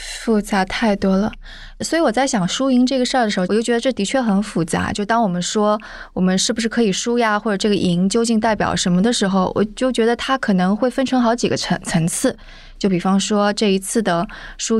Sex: female